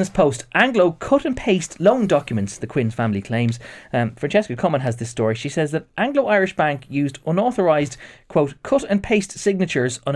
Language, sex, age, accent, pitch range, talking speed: English, male, 20-39, Irish, 115-155 Hz, 185 wpm